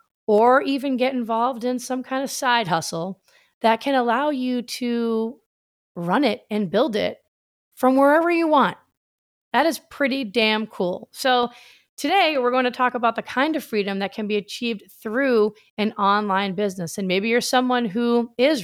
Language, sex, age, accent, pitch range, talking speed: English, female, 30-49, American, 195-255 Hz, 175 wpm